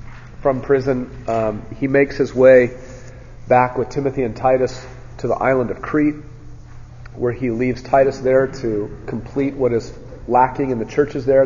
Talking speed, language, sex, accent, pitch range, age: 160 wpm, English, male, American, 115-130 Hz, 40-59